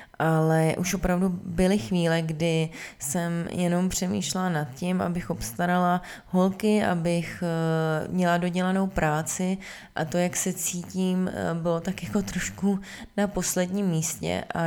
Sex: female